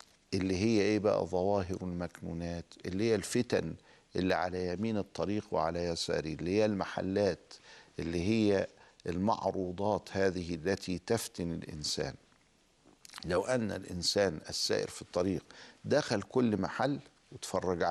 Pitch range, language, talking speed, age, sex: 90-115 Hz, Arabic, 115 wpm, 50-69, male